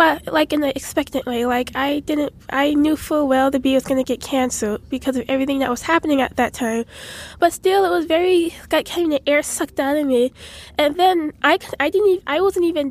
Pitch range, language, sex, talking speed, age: 270-325 Hz, English, female, 240 wpm, 10-29